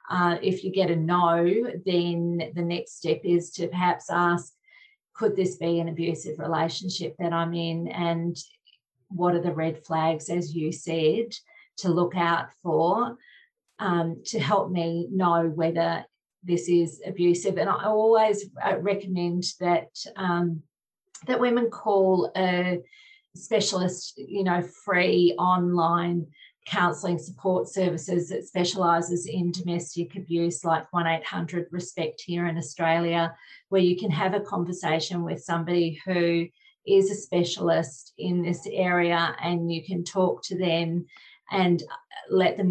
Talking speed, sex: 135 wpm, female